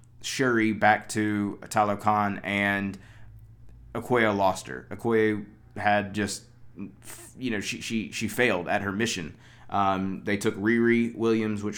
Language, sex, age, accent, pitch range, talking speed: English, male, 20-39, American, 100-120 Hz, 130 wpm